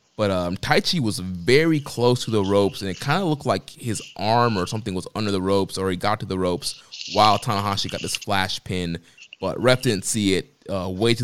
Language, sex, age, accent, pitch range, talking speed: English, male, 20-39, American, 95-110 Hz, 230 wpm